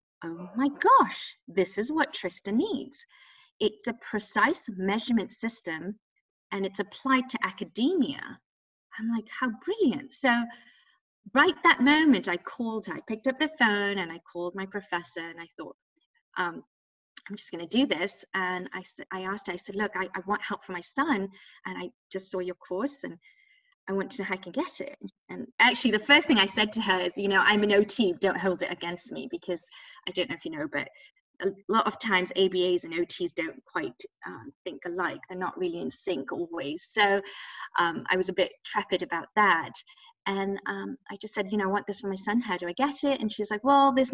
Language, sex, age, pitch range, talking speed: English, female, 30-49, 185-275 Hz, 210 wpm